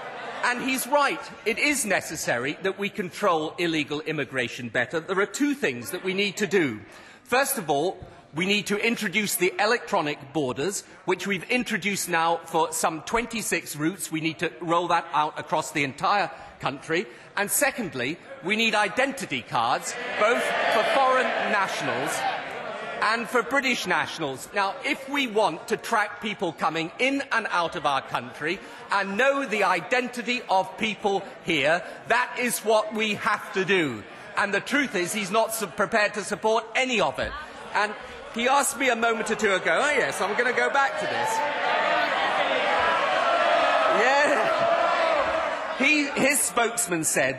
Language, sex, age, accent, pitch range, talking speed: English, male, 40-59, British, 175-240 Hz, 155 wpm